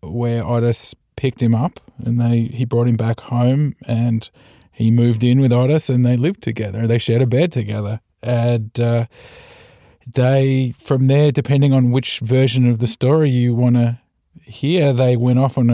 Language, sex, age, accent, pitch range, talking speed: English, male, 20-39, Australian, 120-135 Hz, 180 wpm